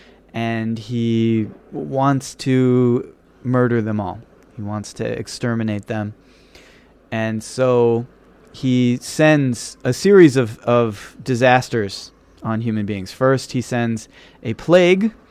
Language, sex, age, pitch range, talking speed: English, male, 30-49, 115-145 Hz, 115 wpm